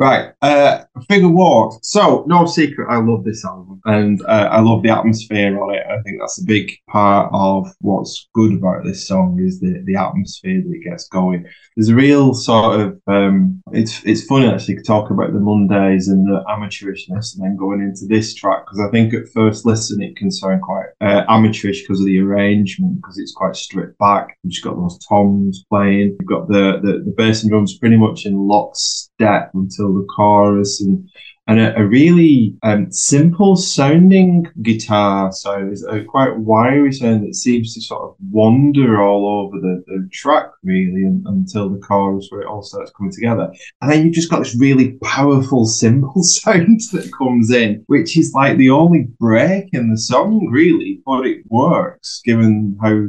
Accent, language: British, English